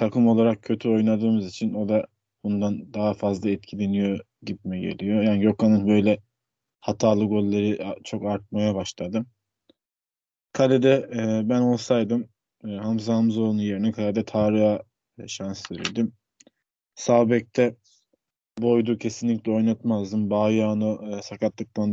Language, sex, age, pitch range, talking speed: Turkish, male, 20-39, 105-115 Hz, 105 wpm